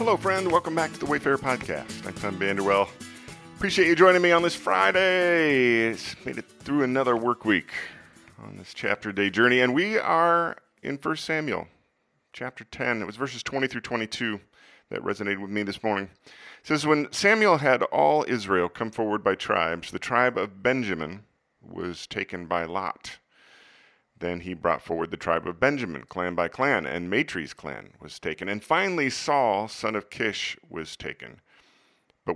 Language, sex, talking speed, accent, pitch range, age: English, male, 170 wpm, American, 95-130 Hz, 40-59